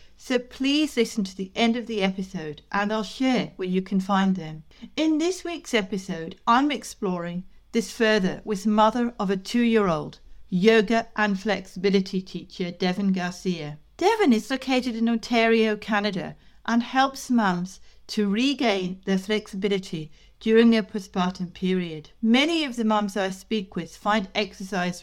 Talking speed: 150 wpm